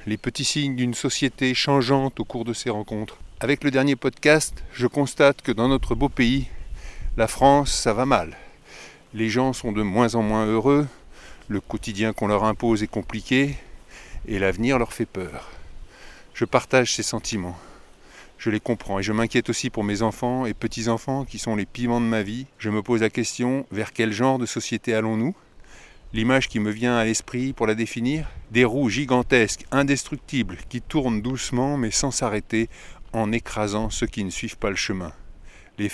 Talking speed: 185 wpm